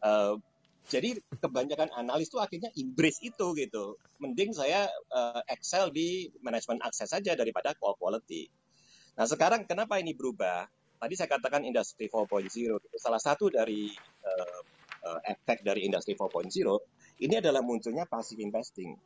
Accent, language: native, Indonesian